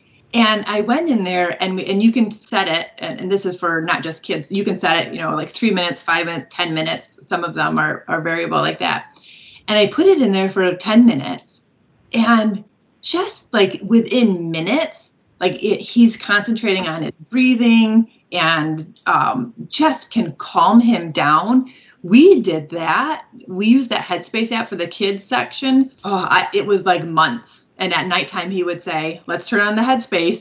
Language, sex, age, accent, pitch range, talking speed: English, female, 30-49, American, 175-230 Hz, 190 wpm